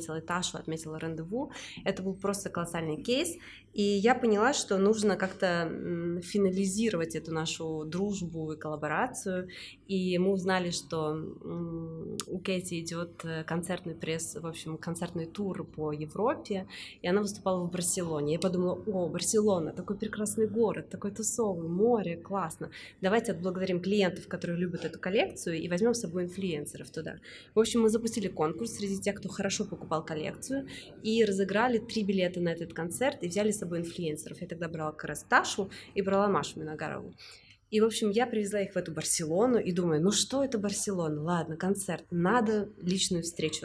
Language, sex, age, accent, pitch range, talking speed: Russian, female, 20-39, native, 165-205 Hz, 160 wpm